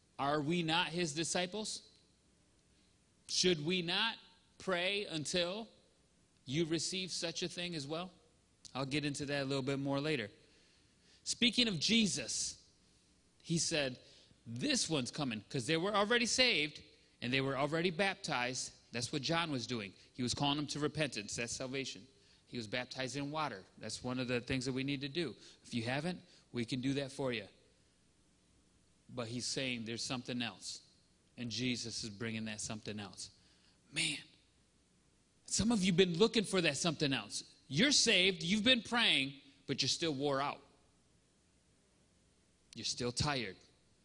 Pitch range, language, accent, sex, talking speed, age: 125-175 Hz, English, American, male, 160 wpm, 30-49